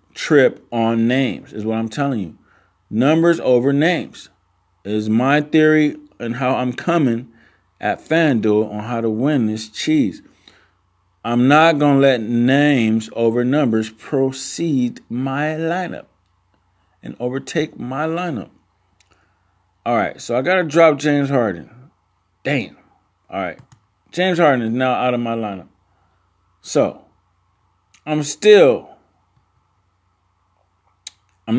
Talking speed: 125 wpm